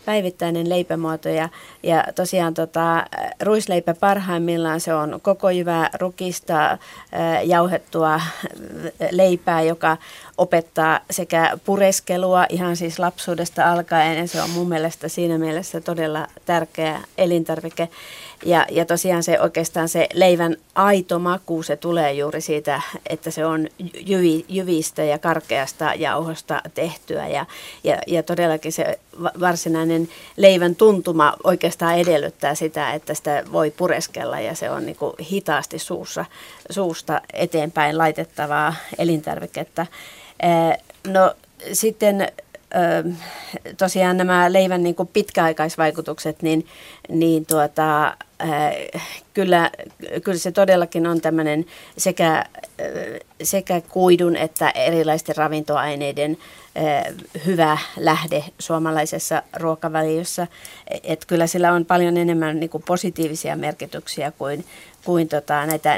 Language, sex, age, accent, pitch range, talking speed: Finnish, female, 30-49, native, 160-180 Hz, 110 wpm